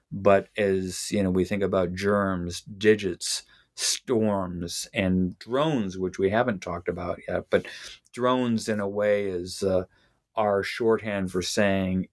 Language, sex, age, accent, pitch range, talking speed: English, male, 40-59, American, 95-110 Hz, 145 wpm